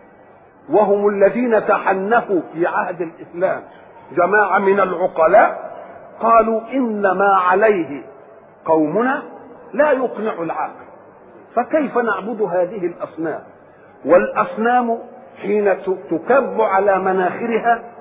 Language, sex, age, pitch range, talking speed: German, male, 50-69, 195-265 Hz, 85 wpm